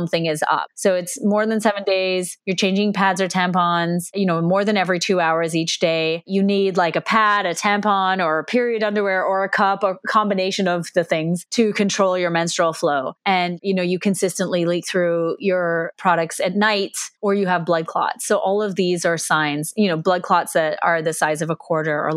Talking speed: 220 wpm